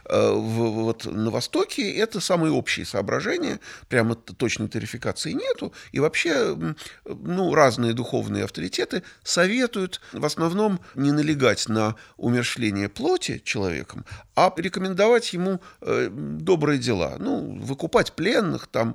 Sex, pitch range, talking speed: male, 110-185 Hz, 110 wpm